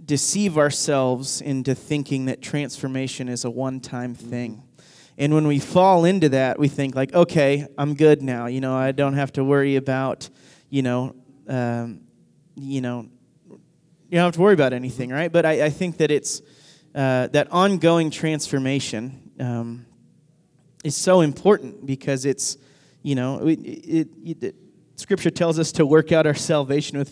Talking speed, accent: 165 wpm, American